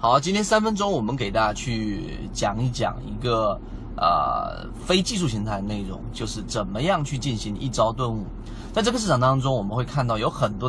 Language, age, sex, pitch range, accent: Chinese, 20-39, male, 110-135 Hz, native